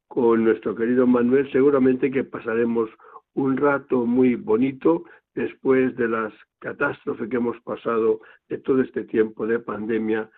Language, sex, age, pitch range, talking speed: Spanish, male, 60-79, 115-145 Hz, 140 wpm